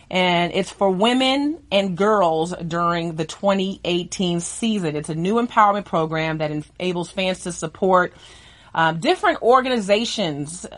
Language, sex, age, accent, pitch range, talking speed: English, female, 30-49, American, 170-210 Hz, 130 wpm